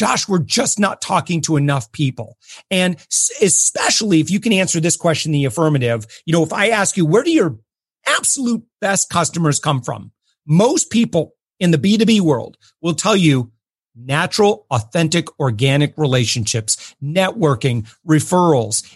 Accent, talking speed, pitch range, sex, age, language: American, 150 wpm, 150-195 Hz, male, 40-59, English